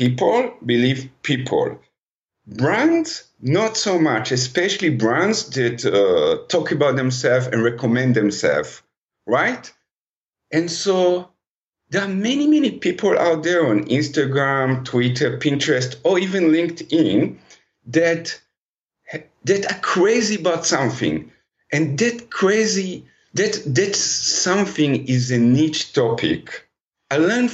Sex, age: male, 50-69